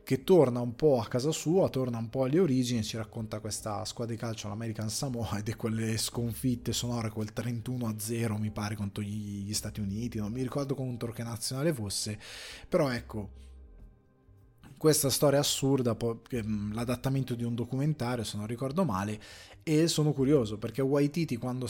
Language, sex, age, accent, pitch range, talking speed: Italian, male, 20-39, native, 105-135 Hz, 170 wpm